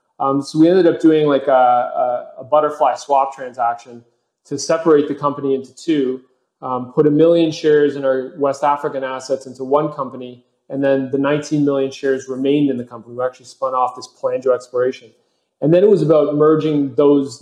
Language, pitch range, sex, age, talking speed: English, 130-150 Hz, male, 30-49, 195 wpm